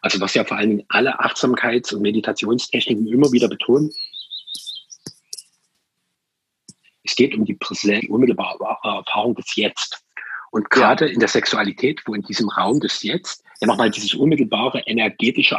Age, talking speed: 40-59, 140 wpm